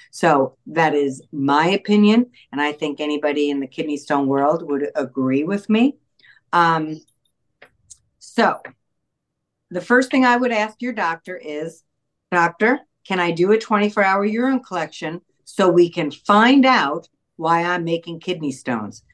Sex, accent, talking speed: female, American, 145 wpm